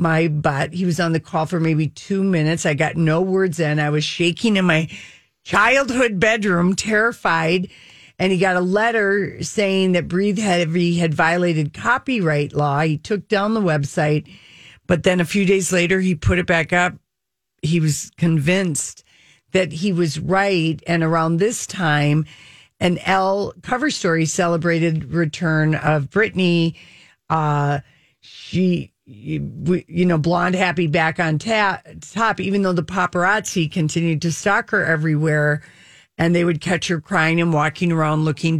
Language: English